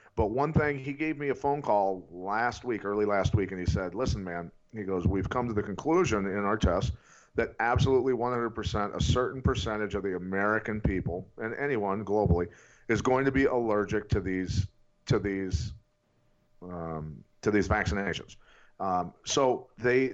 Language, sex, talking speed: English, male, 175 wpm